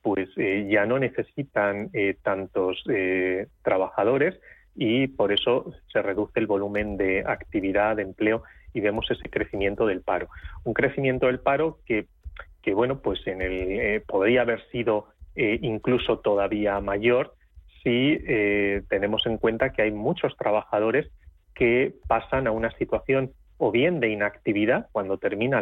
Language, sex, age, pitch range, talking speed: Spanish, male, 30-49, 100-130 Hz, 150 wpm